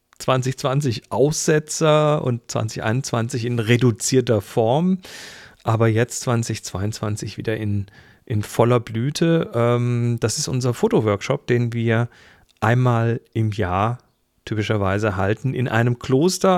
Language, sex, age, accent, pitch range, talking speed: German, male, 40-59, German, 110-140 Hz, 110 wpm